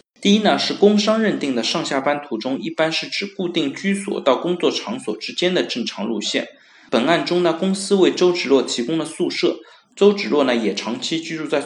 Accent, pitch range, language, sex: native, 140-205 Hz, Chinese, male